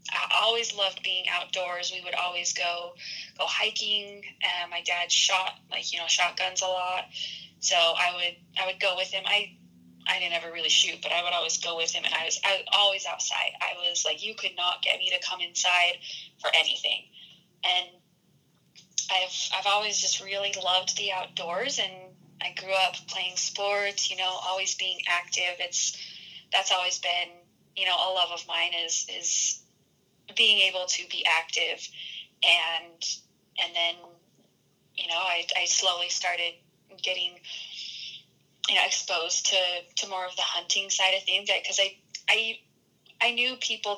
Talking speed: 175 wpm